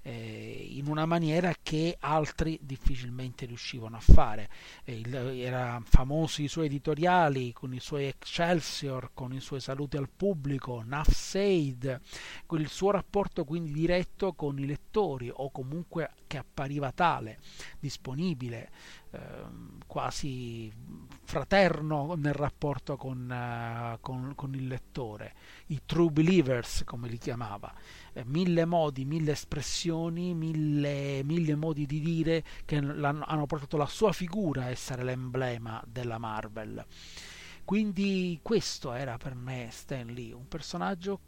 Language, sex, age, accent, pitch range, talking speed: Italian, male, 40-59, native, 125-165 Hz, 125 wpm